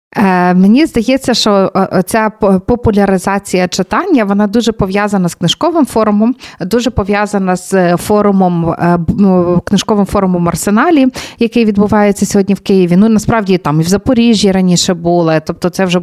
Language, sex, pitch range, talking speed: Ukrainian, female, 190-245 Hz, 130 wpm